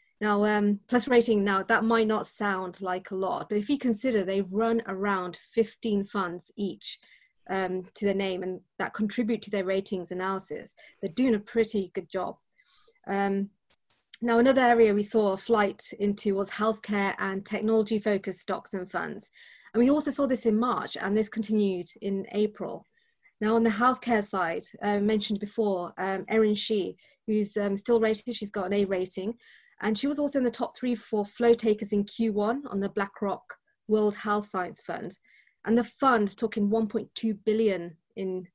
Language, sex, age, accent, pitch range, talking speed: English, female, 30-49, British, 195-225 Hz, 180 wpm